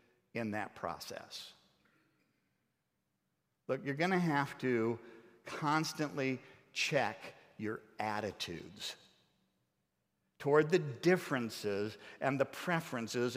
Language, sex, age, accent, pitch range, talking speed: English, male, 50-69, American, 130-180 Hz, 80 wpm